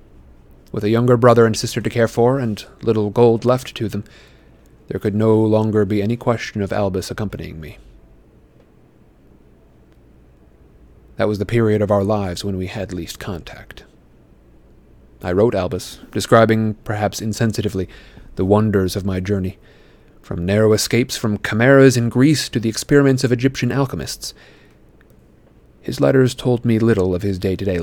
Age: 30-49